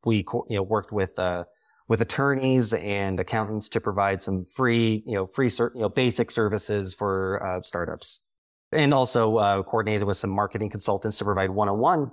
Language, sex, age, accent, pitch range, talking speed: English, male, 30-49, American, 95-120 Hz, 190 wpm